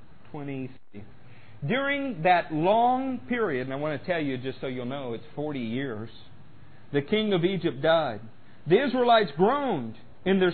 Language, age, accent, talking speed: English, 50-69, American, 155 wpm